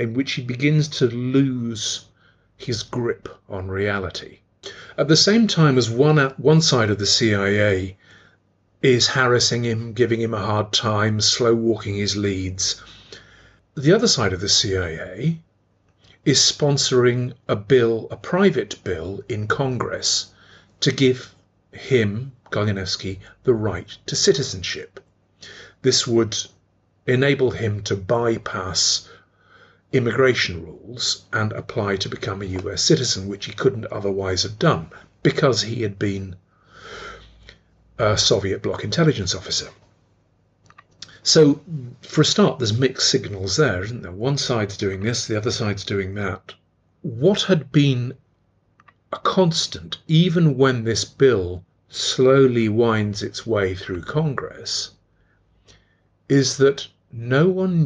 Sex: male